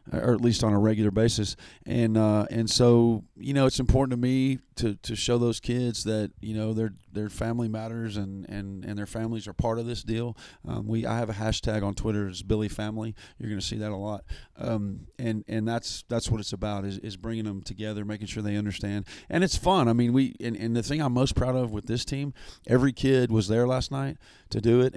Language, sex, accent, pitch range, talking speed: English, male, American, 105-115 Hz, 240 wpm